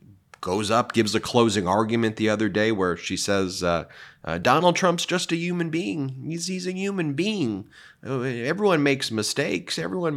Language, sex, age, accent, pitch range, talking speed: English, male, 30-49, American, 115-150 Hz, 170 wpm